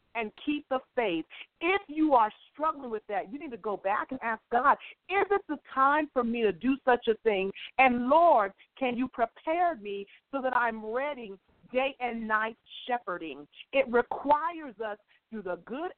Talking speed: 190 wpm